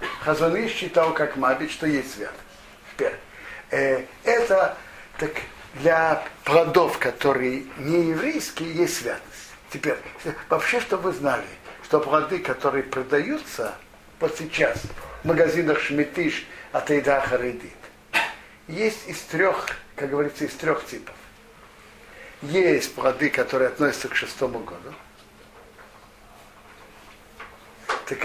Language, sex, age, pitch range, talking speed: Russian, male, 60-79, 135-185 Hz, 105 wpm